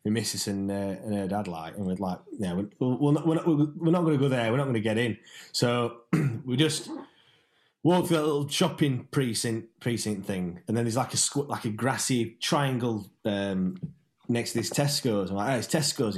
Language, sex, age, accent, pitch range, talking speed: English, male, 20-39, British, 95-135 Hz, 225 wpm